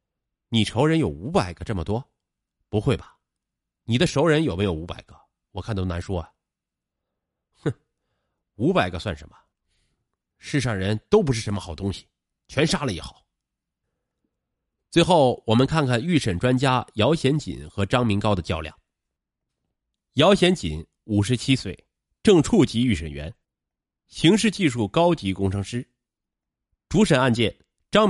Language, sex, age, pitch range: Chinese, male, 30-49, 85-125 Hz